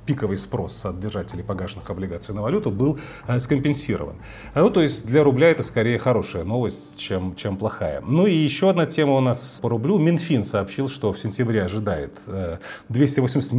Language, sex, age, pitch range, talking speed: Russian, male, 30-49, 100-135 Hz, 175 wpm